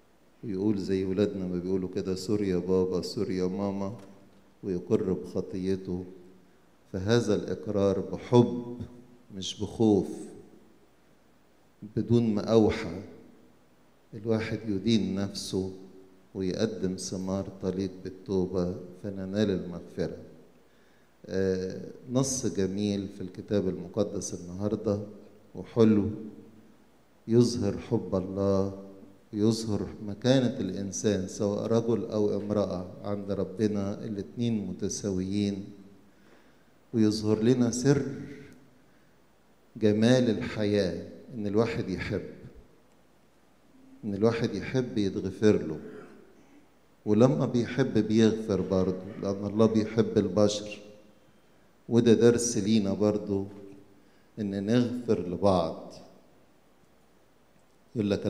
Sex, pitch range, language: male, 95-110 Hz, English